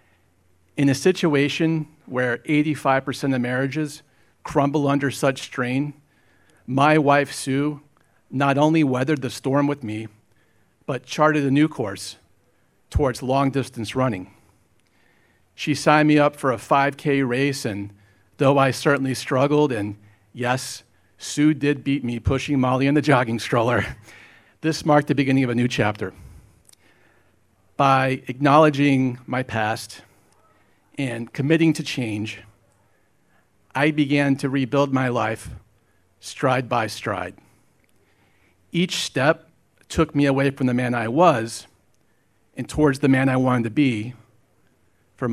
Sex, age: male, 40-59